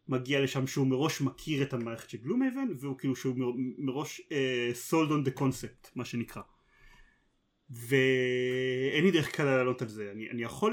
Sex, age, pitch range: male, 30-49, 125-150 Hz